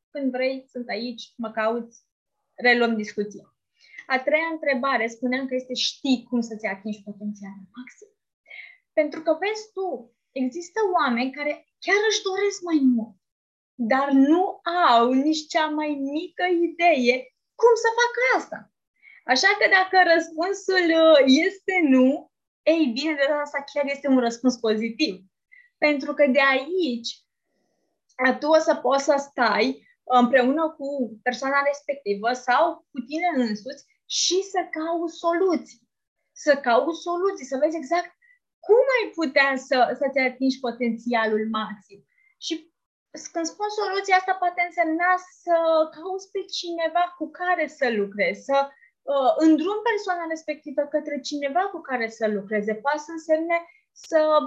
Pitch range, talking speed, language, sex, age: 250-350 Hz, 135 wpm, Romanian, female, 20-39